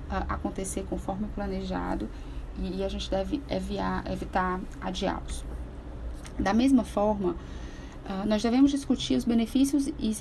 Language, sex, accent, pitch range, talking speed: Portuguese, female, Brazilian, 180-230 Hz, 105 wpm